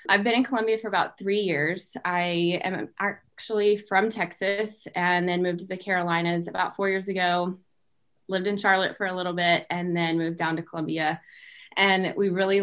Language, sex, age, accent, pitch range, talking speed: English, female, 20-39, American, 175-210 Hz, 185 wpm